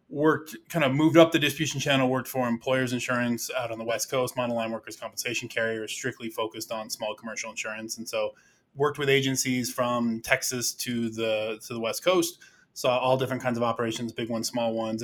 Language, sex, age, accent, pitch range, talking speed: English, male, 20-39, American, 115-140 Hz, 205 wpm